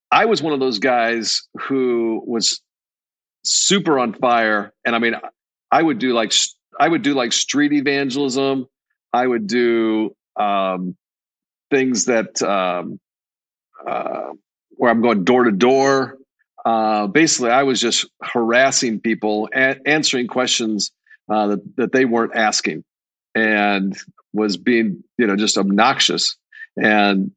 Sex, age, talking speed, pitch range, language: male, 50-69, 135 wpm, 105-125 Hz, English